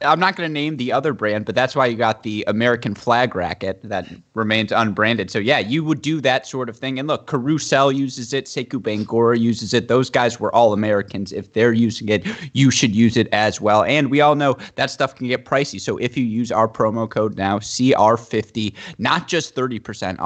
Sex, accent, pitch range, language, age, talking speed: male, American, 105-130 Hz, English, 20-39, 220 wpm